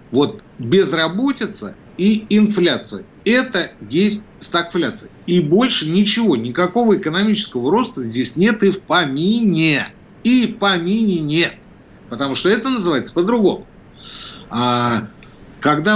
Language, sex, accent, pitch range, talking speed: Russian, male, native, 130-195 Hz, 105 wpm